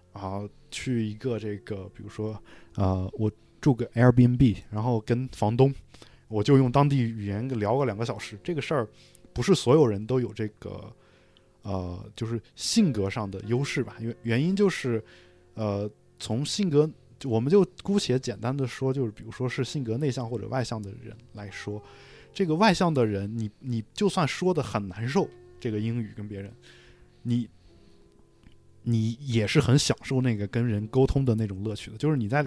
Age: 20-39